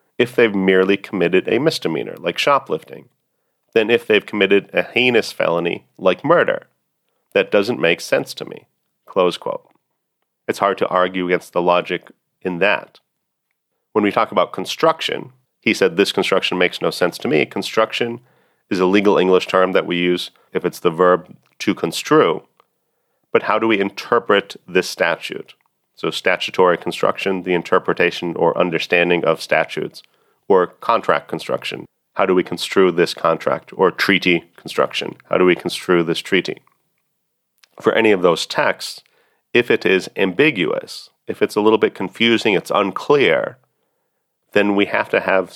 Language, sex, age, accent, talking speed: English, male, 40-59, American, 155 wpm